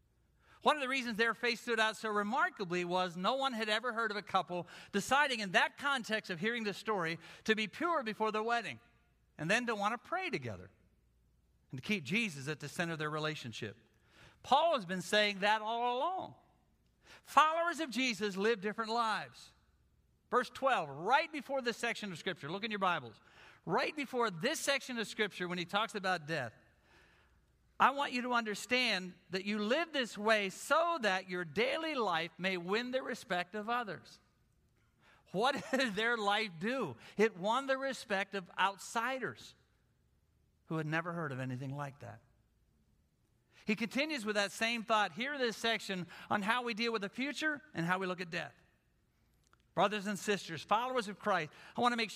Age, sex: 50-69, male